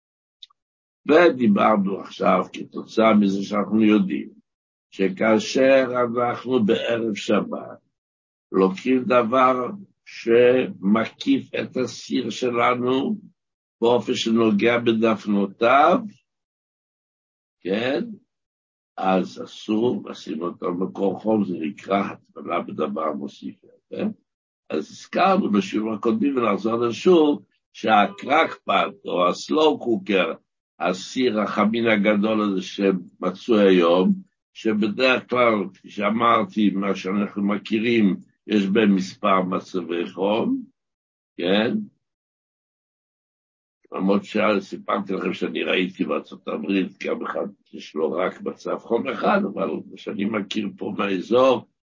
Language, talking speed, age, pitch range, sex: Hebrew, 95 wpm, 60-79, 95-120 Hz, male